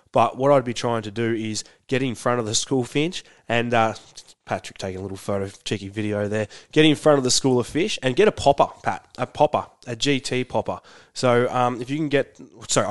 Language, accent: English, Australian